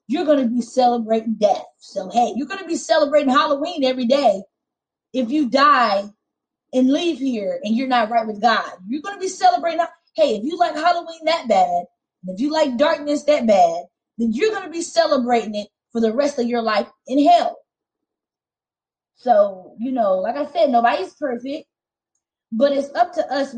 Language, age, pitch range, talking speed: English, 20-39, 235-310 Hz, 190 wpm